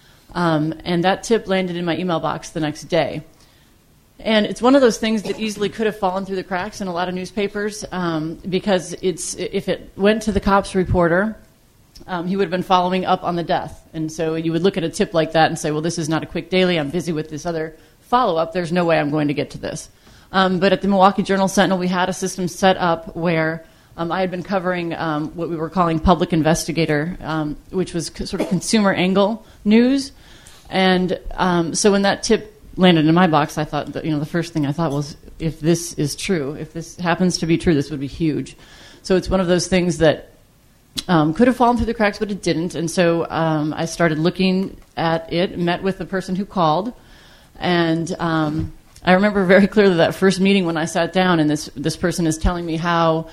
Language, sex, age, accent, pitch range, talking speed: English, female, 30-49, American, 160-190 Hz, 235 wpm